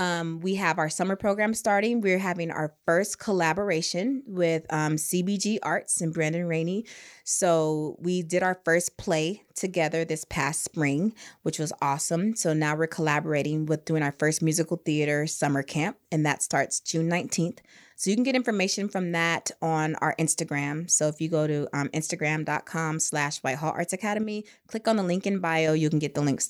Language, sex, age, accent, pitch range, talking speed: English, female, 20-39, American, 155-190 Hz, 180 wpm